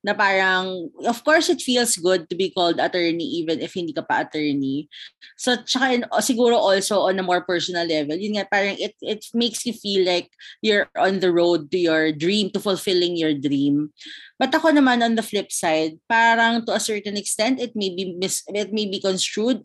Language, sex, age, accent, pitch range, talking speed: Filipino, female, 20-39, native, 175-230 Hz, 200 wpm